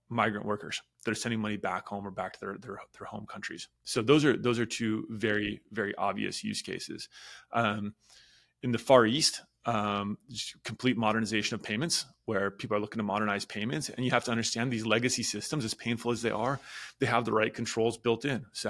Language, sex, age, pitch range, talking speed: English, male, 30-49, 105-120 Hz, 210 wpm